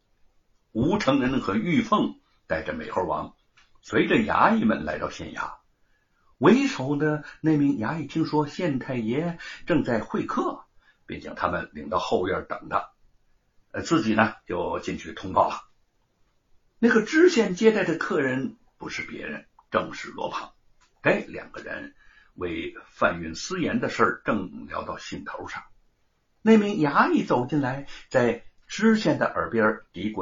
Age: 60-79